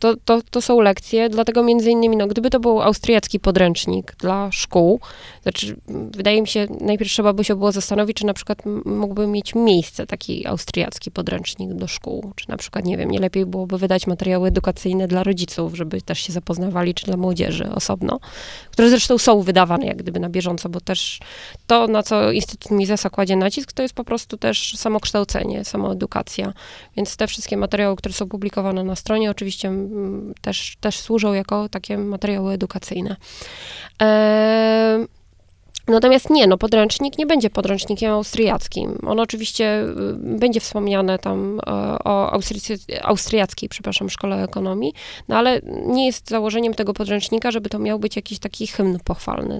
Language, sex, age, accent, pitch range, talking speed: Polish, female, 20-39, native, 190-220 Hz, 160 wpm